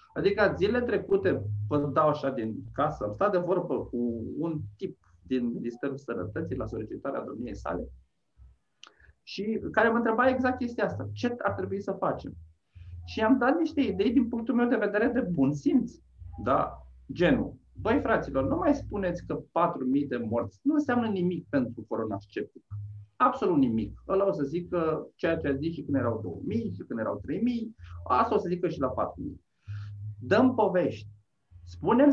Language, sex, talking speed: Romanian, male, 170 wpm